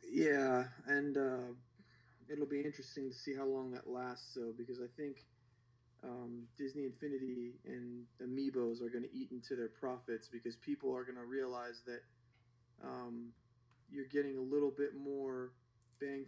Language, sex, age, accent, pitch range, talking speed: English, male, 30-49, American, 120-135 Hz, 155 wpm